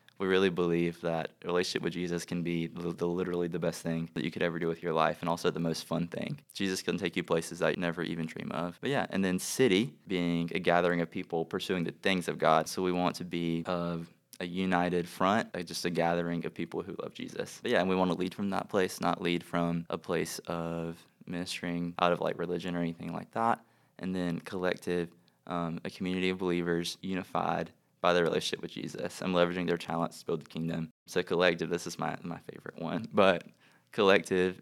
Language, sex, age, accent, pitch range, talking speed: English, male, 20-39, American, 85-90 Hz, 225 wpm